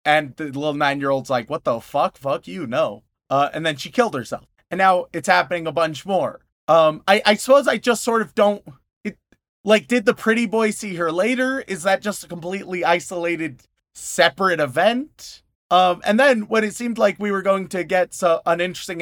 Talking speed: 200 wpm